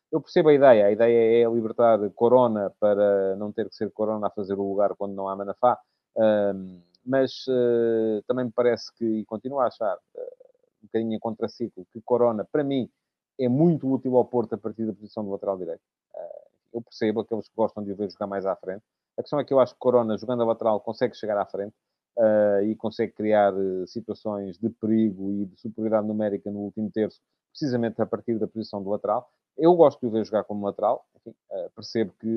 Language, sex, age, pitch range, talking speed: Portuguese, male, 40-59, 105-125 Hz, 200 wpm